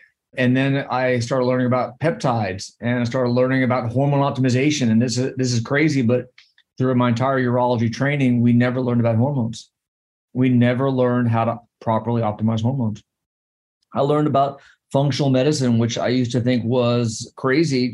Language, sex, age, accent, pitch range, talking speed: English, male, 30-49, American, 115-130 Hz, 170 wpm